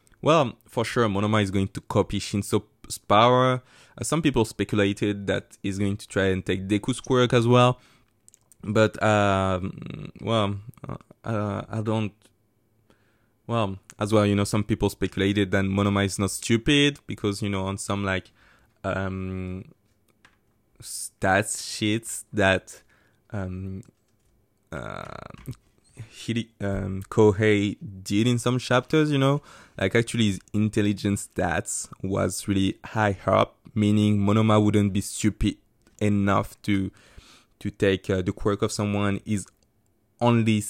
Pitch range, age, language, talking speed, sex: 100-115 Hz, 20-39, English, 130 wpm, male